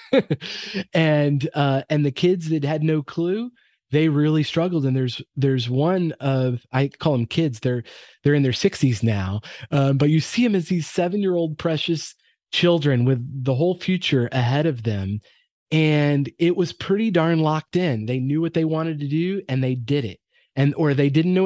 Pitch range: 130-165 Hz